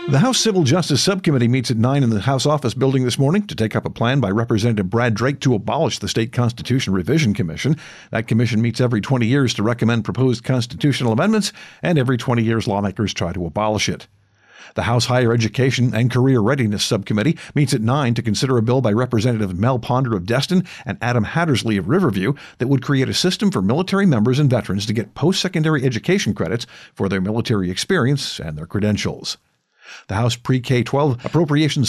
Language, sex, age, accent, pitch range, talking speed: English, male, 50-69, American, 110-140 Hz, 195 wpm